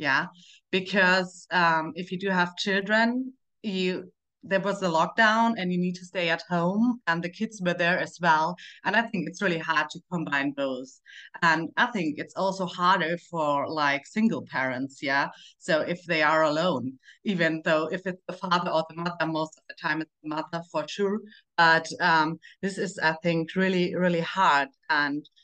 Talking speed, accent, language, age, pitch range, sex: 190 wpm, German, English, 30-49, 150-180 Hz, female